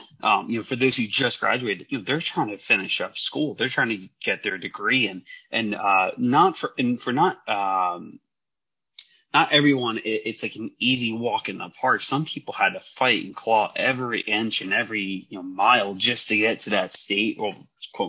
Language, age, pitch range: English, 30-49, 100-125 Hz